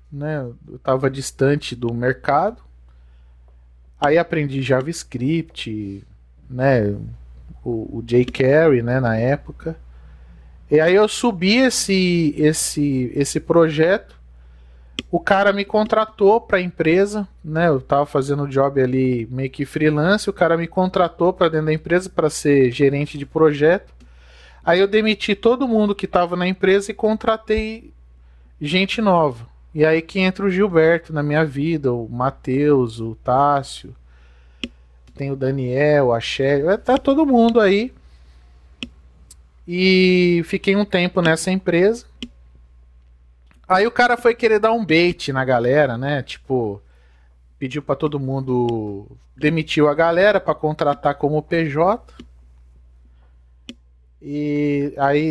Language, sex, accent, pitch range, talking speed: Portuguese, male, Brazilian, 110-175 Hz, 125 wpm